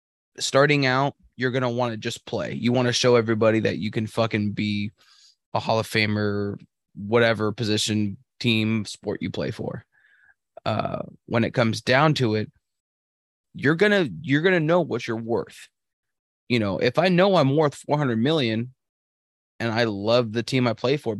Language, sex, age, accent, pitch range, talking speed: English, male, 20-39, American, 110-135 Hz, 175 wpm